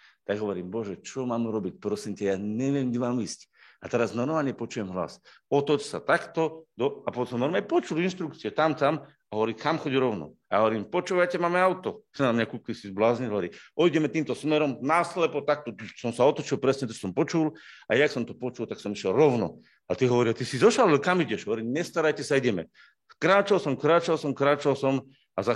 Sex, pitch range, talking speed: male, 110-150 Hz, 210 wpm